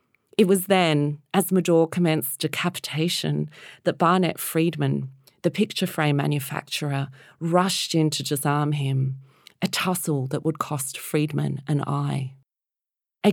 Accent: Australian